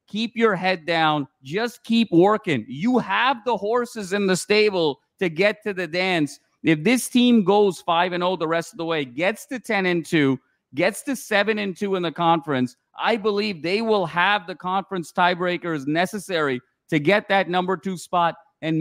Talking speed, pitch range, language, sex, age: 180 wpm, 170-205 Hz, English, male, 40-59